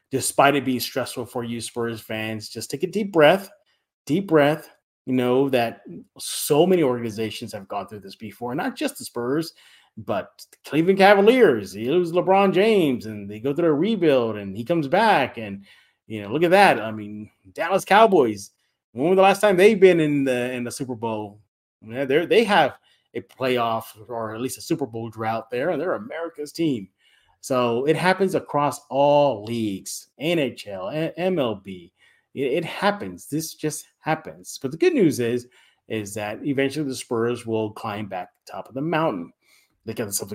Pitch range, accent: 110-170 Hz, American